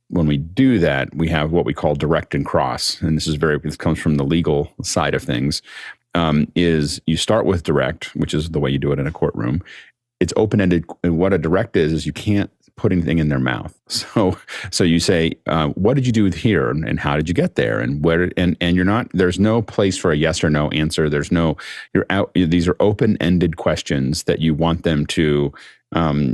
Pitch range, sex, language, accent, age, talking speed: 75-95 Hz, male, English, American, 40-59, 230 wpm